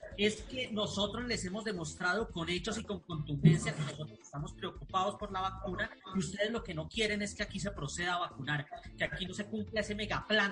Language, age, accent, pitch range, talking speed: Spanish, 30-49, Colombian, 155-210 Hz, 220 wpm